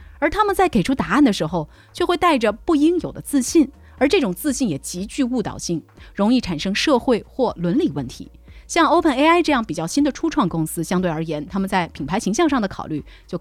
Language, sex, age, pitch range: Chinese, female, 30-49, 170-270 Hz